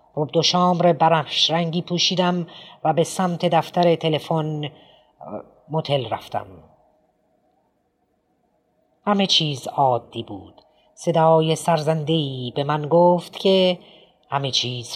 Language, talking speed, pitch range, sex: Persian, 95 wpm, 135-175 Hz, female